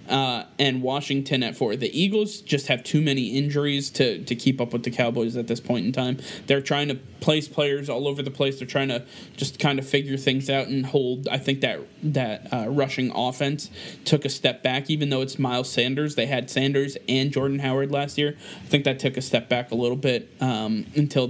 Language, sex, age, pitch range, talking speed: English, male, 20-39, 125-145 Hz, 225 wpm